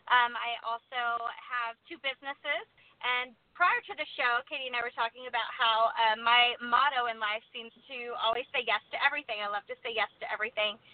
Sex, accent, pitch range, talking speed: female, American, 215-250 Hz, 205 wpm